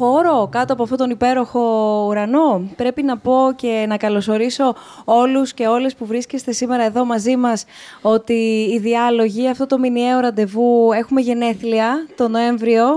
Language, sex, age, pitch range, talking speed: Greek, female, 20-39, 210-260 Hz, 155 wpm